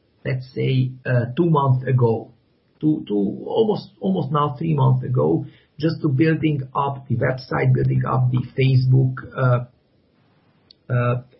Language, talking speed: English, 135 wpm